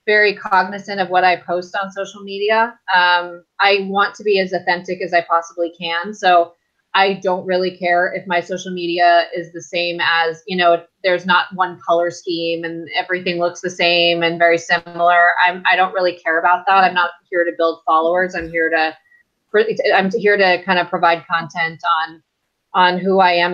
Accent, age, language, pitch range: American, 30-49, English, 170-195 Hz